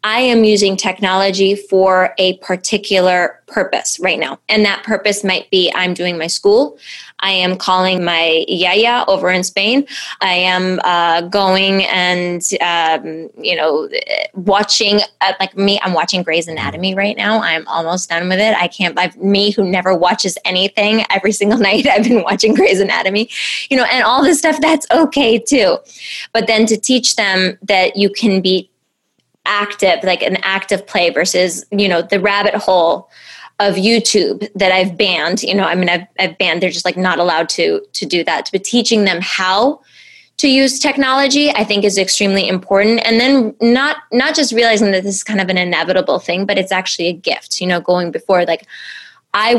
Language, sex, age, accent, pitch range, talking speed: English, female, 20-39, American, 185-220 Hz, 185 wpm